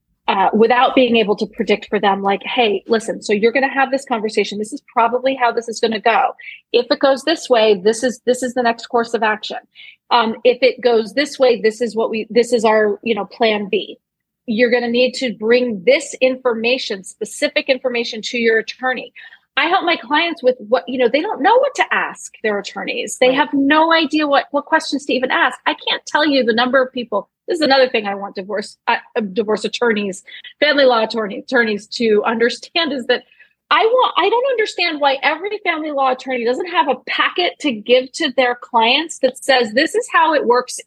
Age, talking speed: 30-49, 220 wpm